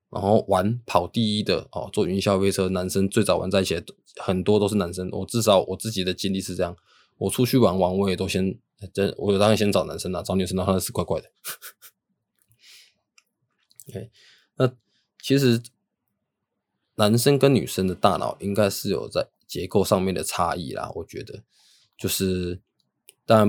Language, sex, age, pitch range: Chinese, male, 20-39, 90-105 Hz